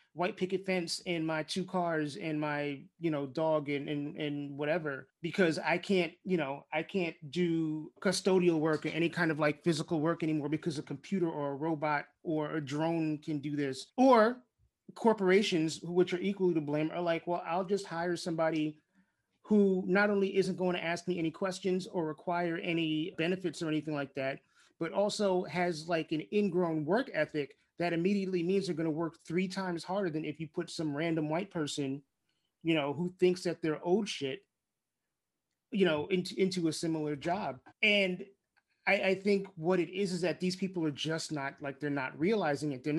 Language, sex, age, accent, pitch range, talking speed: English, male, 30-49, American, 155-185 Hz, 195 wpm